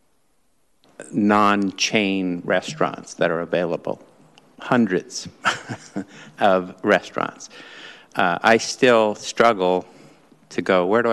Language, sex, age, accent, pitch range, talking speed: English, male, 50-69, American, 90-110 Hz, 85 wpm